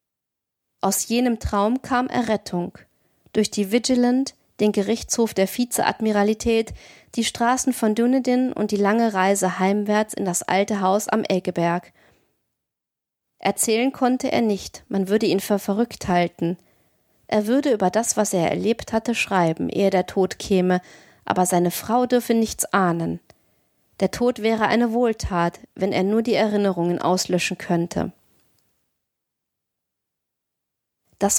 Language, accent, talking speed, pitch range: German, German, 130 wpm, 195-235 Hz